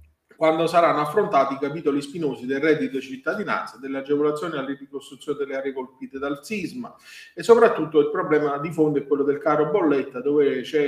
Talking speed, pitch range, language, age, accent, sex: 170 wpm, 140-170 Hz, Italian, 30-49, native, male